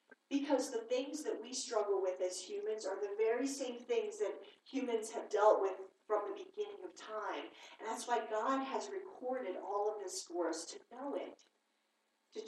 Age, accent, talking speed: 40-59, American, 190 wpm